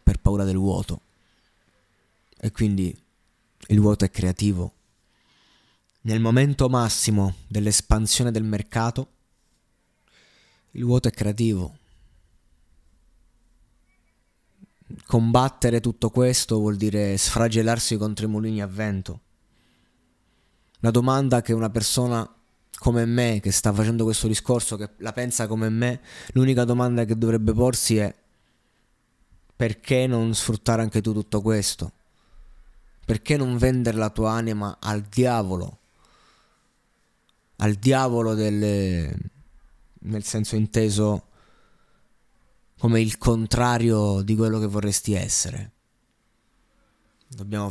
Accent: native